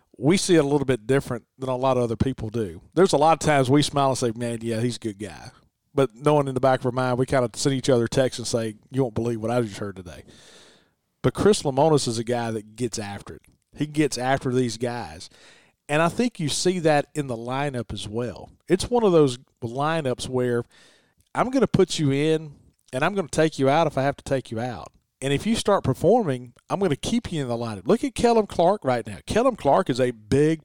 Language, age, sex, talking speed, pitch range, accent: English, 40-59, male, 255 wpm, 120-155 Hz, American